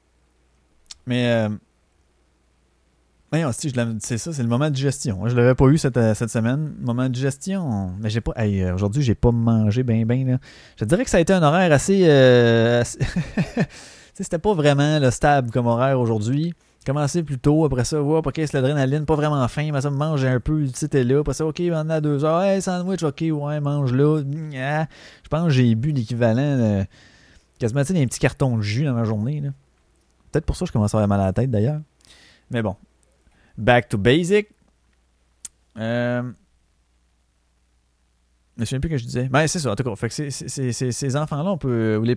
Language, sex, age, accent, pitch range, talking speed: French, male, 30-49, Canadian, 115-155 Hz, 210 wpm